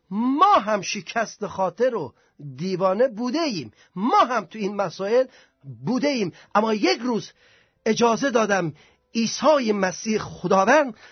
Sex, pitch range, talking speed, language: male, 180-250 Hz, 125 wpm, Persian